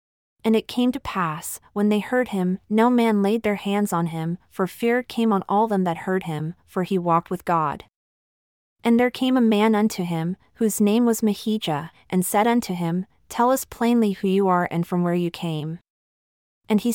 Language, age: English, 30-49